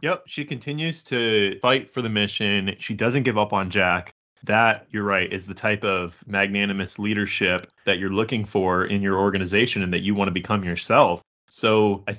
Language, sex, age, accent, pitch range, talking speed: English, male, 20-39, American, 100-125 Hz, 190 wpm